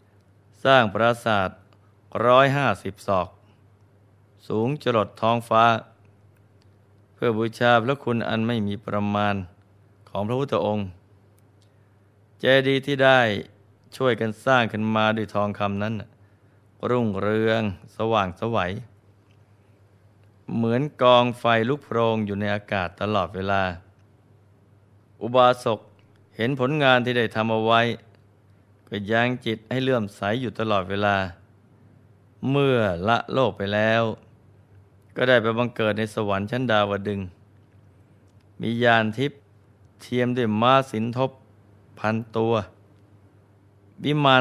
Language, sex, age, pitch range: Thai, male, 20-39, 100-115 Hz